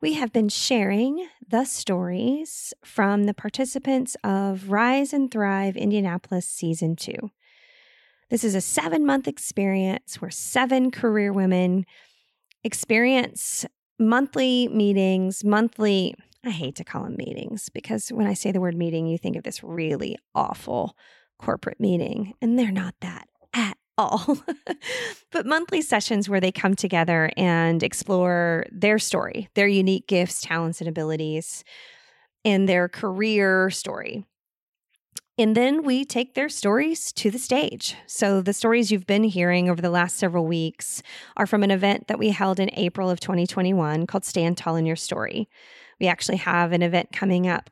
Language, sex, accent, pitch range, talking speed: English, female, American, 180-240 Hz, 150 wpm